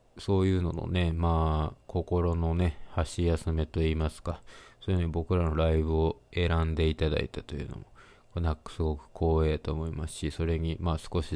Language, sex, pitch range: Japanese, male, 80-90 Hz